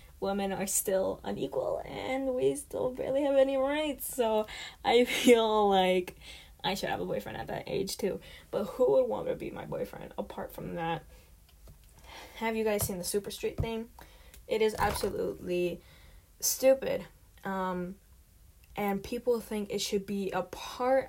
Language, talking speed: English, 160 wpm